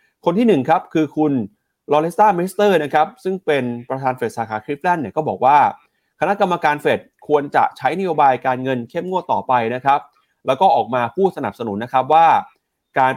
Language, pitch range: Thai, 115-155 Hz